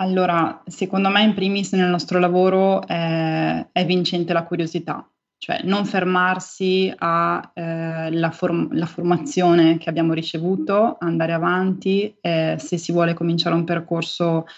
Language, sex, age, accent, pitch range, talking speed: Italian, female, 20-39, native, 165-185 Hz, 130 wpm